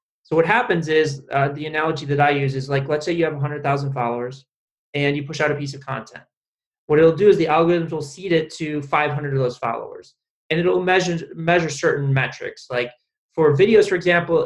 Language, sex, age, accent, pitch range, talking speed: English, male, 20-39, American, 135-155 Hz, 210 wpm